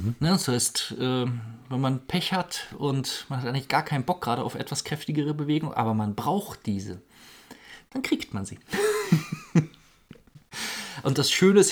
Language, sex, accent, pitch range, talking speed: German, male, German, 115-160 Hz, 155 wpm